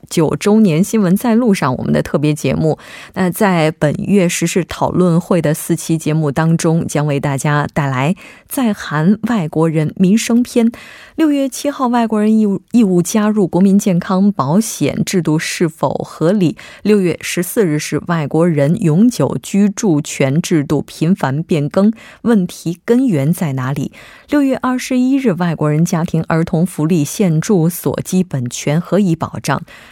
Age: 20-39